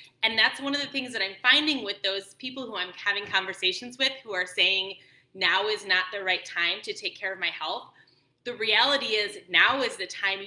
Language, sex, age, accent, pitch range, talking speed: English, female, 20-39, American, 180-230 Hz, 225 wpm